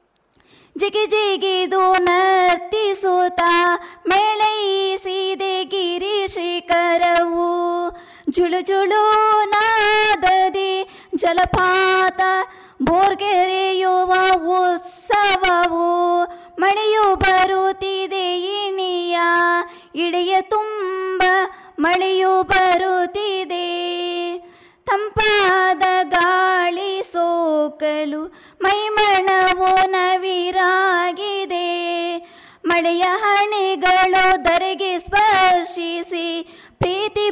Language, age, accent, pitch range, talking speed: Kannada, 20-39, native, 350-380 Hz, 45 wpm